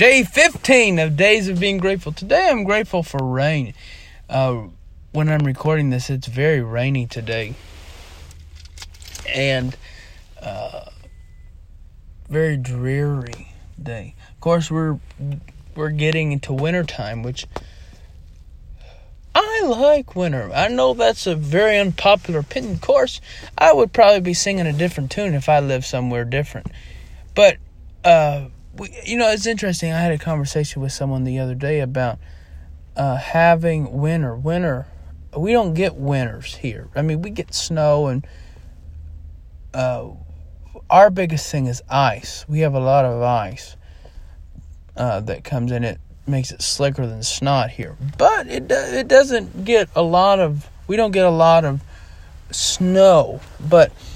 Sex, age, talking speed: male, 30-49, 145 wpm